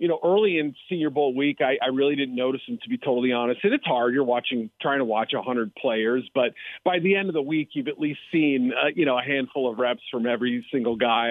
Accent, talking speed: American, 255 wpm